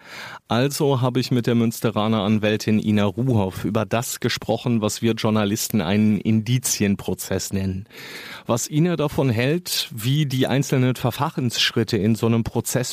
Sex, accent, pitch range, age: male, German, 110-130 Hz, 30-49